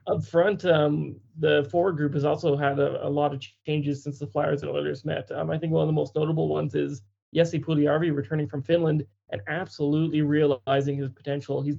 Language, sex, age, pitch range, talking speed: English, male, 20-39, 145-165 Hz, 210 wpm